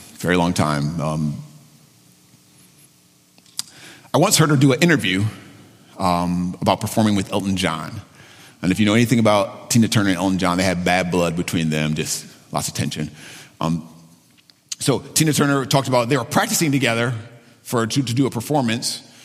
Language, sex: English, male